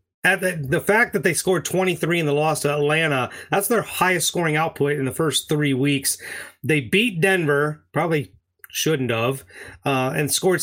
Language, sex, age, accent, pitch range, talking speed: English, male, 30-49, American, 145-175 Hz, 180 wpm